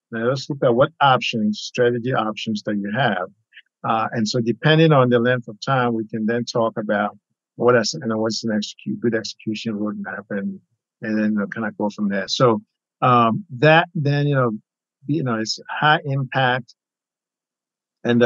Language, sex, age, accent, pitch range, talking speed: English, male, 50-69, American, 105-130 Hz, 185 wpm